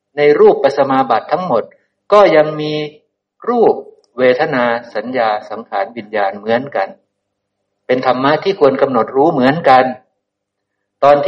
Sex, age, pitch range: male, 60-79, 120-180 Hz